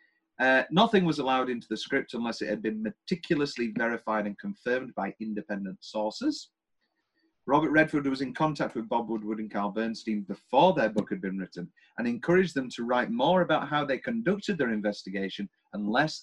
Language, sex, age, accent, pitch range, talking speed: English, male, 30-49, British, 110-155 Hz, 180 wpm